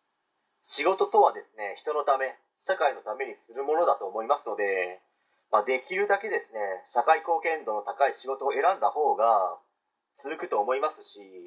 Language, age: Japanese, 40-59